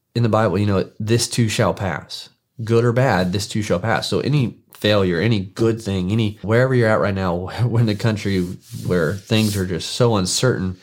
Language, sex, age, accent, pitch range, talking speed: English, male, 20-39, American, 95-115 Hz, 210 wpm